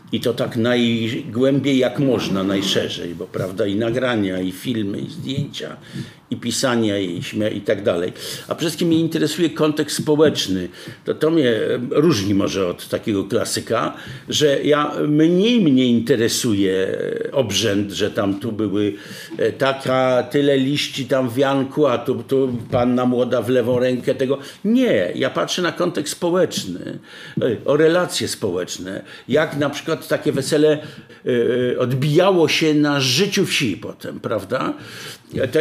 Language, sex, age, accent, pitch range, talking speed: Polish, male, 50-69, native, 120-155 Hz, 140 wpm